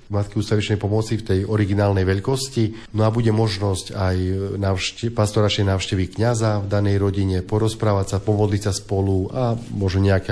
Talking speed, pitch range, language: 155 wpm, 95-110 Hz, Slovak